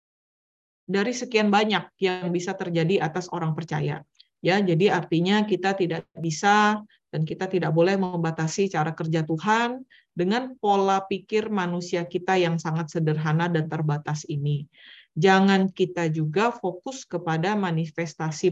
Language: Indonesian